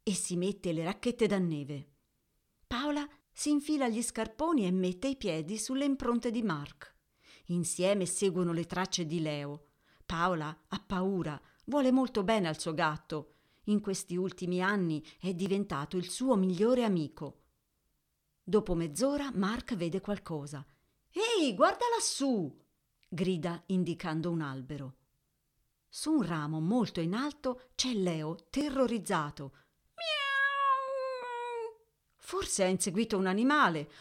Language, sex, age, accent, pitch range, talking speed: Italian, female, 40-59, native, 160-235 Hz, 125 wpm